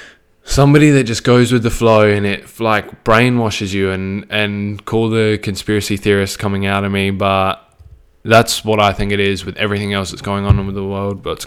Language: English